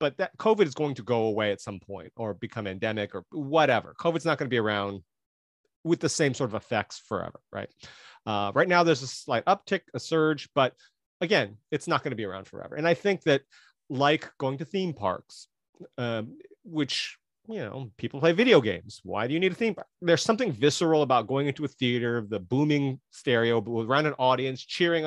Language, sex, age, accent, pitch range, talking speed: English, male, 30-49, American, 115-155 Hz, 210 wpm